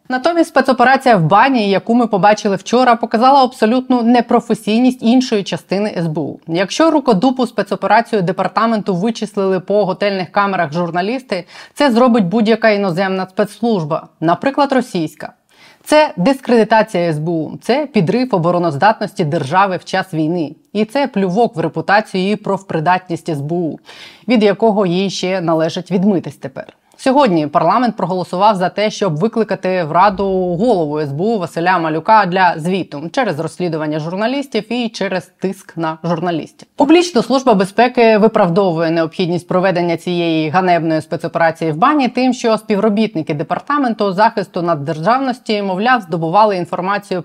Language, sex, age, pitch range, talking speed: Ukrainian, female, 20-39, 170-225 Hz, 125 wpm